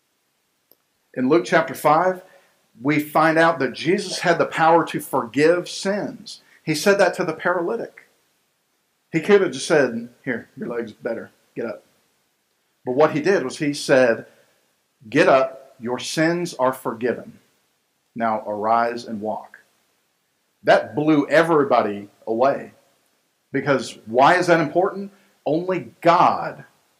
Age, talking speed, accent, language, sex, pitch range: 50-69, 135 wpm, American, English, male, 130-180 Hz